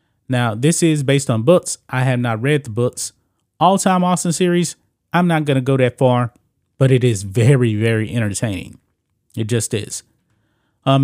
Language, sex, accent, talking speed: English, male, American, 180 wpm